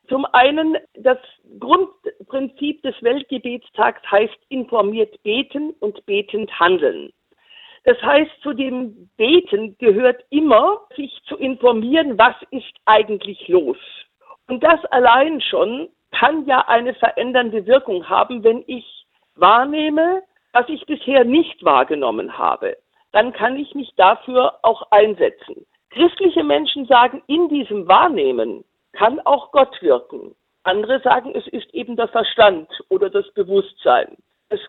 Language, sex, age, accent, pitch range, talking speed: German, female, 50-69, German, 240-365 Hz, 125 wpm